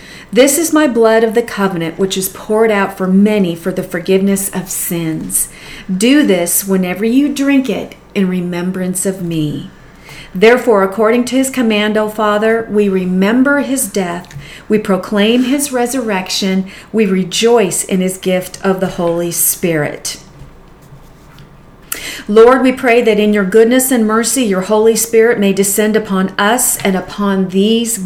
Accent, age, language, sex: American, 40-59, English, female